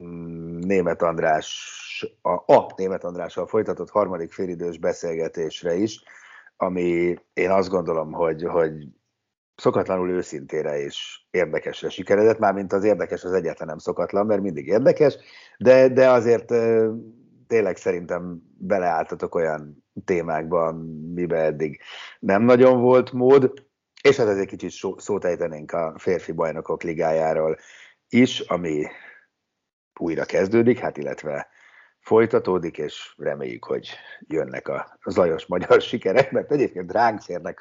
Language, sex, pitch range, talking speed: Hungarian, male, 90-130 Hz, 125 wpm